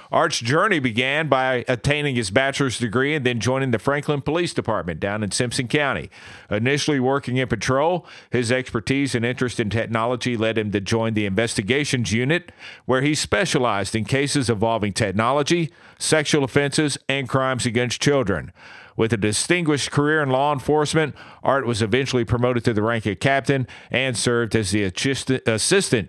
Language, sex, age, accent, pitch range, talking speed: English, male, 50-69, American, 115-140 Hz, 160 wpm